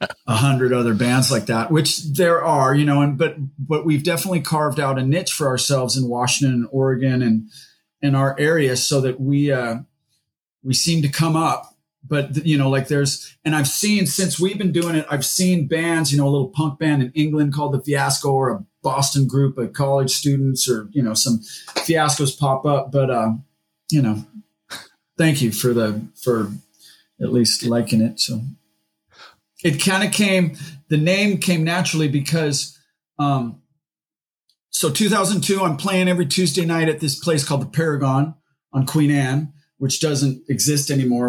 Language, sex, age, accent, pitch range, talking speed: English, male, 30-49, American, 125-155 Hz, 180 wpm